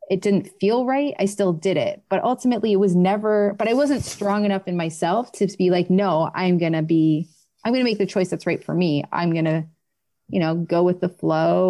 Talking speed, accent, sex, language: 240 wpm, American, female, English